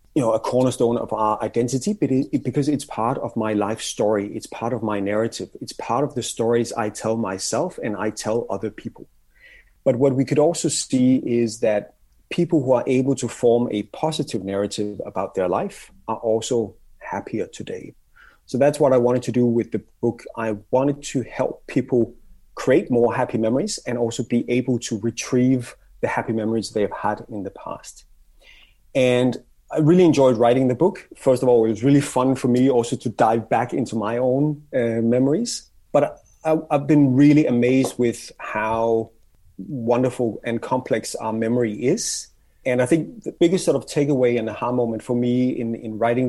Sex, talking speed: male, 190 wpm